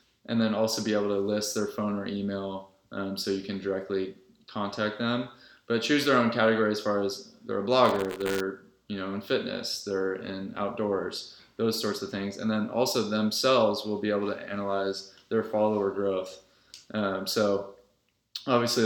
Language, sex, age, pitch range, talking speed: English, male, 20-39, 95-110 Hz, 180 wpm